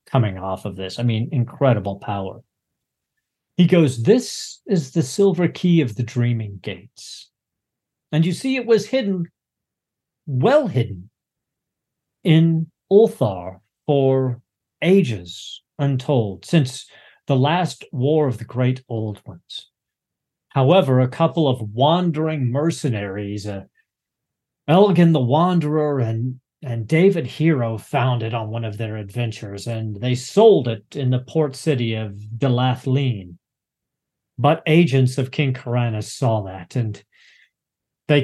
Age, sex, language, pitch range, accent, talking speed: 40-59, male, English, 115-155 Hz, American, 125 wpm